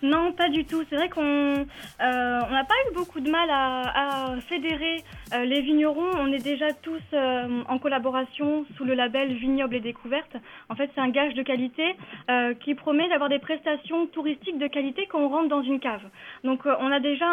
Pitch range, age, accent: 265-310 Hz, 10-29, French